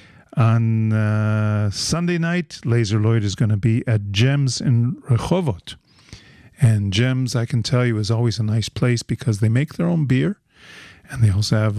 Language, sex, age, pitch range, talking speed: English, male, 50-69, 105-125 Hz, 180 wpm